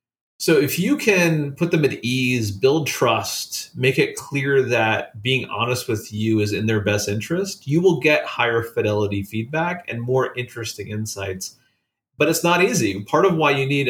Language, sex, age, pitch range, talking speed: English, male, 30-49, 110-140 Hz, 180 wpm